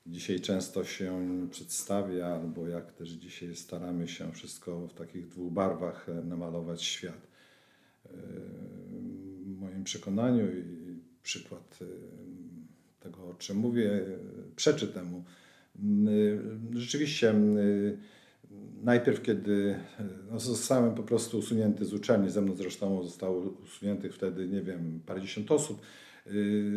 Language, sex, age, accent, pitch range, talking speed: Polish, male, 50-69, native, 90-110 Hz, 110 wpm